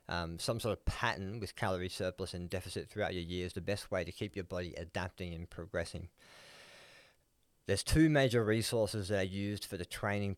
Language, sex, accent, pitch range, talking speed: English, male, Australian, 95-110 Hz, 190 wpm